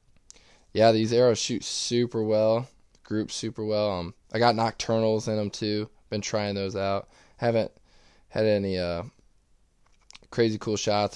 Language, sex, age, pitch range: English, male, 20-39, 90-110 Hz